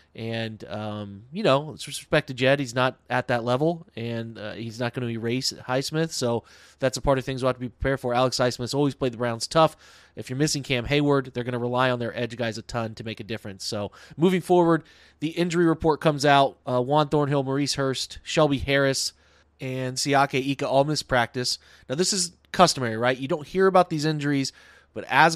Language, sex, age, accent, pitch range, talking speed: English, male, 30-49, American, 125-150 Hz, 220 wpm